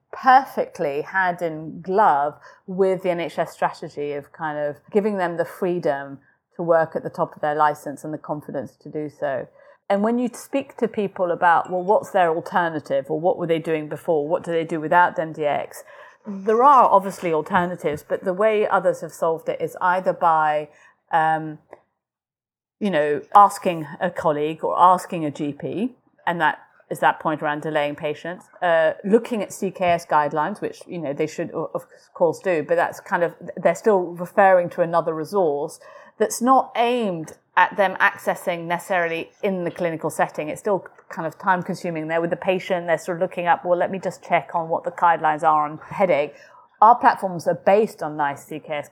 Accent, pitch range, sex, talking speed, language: British, 155-190 Hz, female, 185 wpm, English